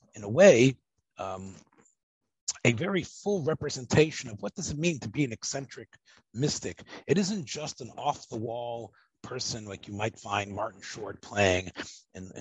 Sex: male